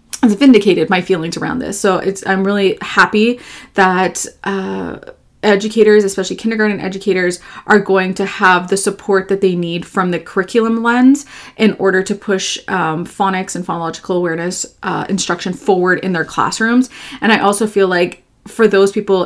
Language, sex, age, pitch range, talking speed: English, female, 20-39, 180-210 Hz, 160 wpm